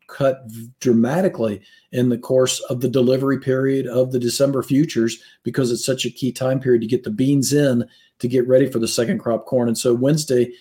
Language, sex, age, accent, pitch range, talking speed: English, male, 40-59, American, 115-135 Hz, 205 wpm